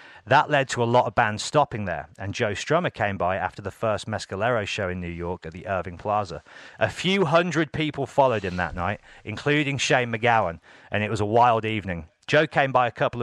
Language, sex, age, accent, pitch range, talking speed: English, male, 40-59, British, 95-120 Hz, 220 wpm